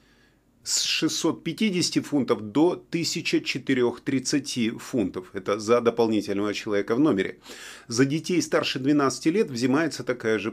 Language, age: Russian, 30-49